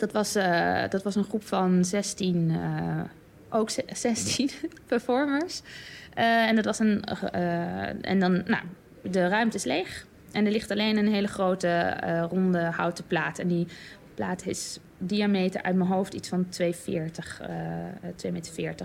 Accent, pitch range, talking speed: Dutch, 170-200 Hz, 155 wpm